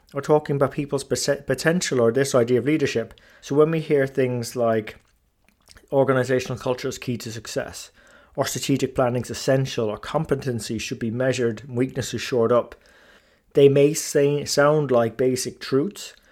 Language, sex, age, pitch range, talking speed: English, male, 30-49, 120-145 Hz, 160 wpm